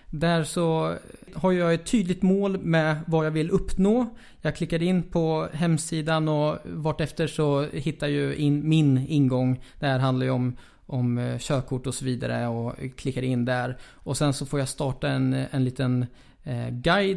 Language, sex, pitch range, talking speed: Swedish, male, 130-160 Hz, 170 wpm